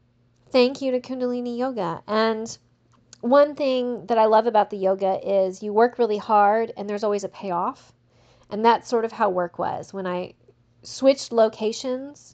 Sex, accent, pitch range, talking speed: female, American, 180-230 Hz, 170 wpm